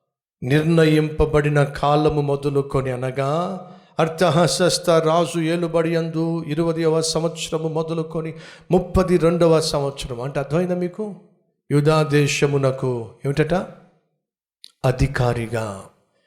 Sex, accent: male, native